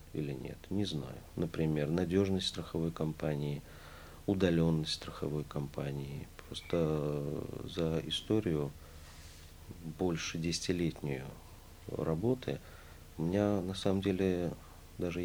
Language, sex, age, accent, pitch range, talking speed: Russian, male, 40-59, native, 80-95 Hz, 90 wpm